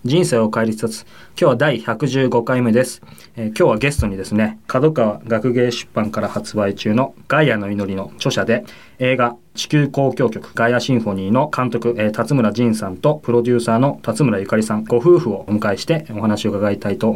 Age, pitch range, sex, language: 20-39, 110-135 Hz, male, Japanese